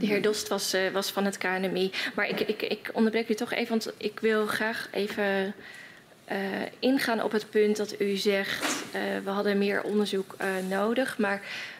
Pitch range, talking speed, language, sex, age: 200-225 Hz, 190 wpm, Dutch, female, 20-39